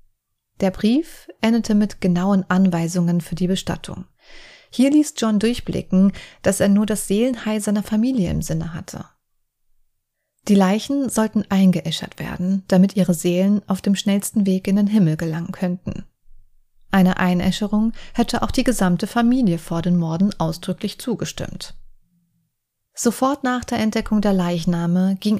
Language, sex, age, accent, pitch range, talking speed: German, female, 30-49, German, 180-225 Hz, 140 wpm